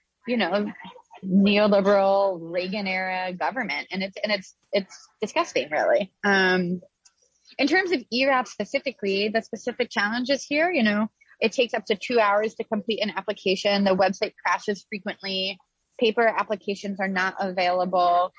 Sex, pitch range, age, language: female, 190-250 Hz, 20-39, English